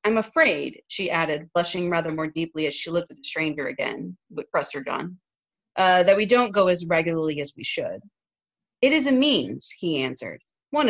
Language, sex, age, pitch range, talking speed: English, female, 30-49, 160-235 Hz, 205 wpm